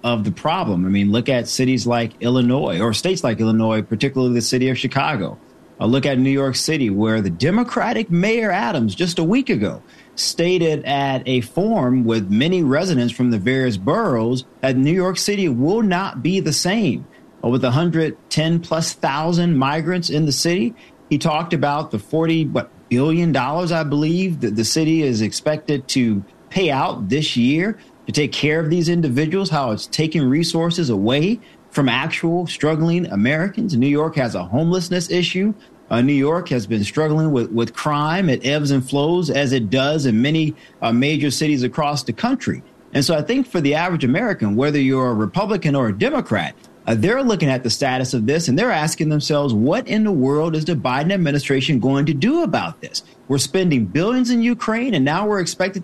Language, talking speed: English, 185 wpm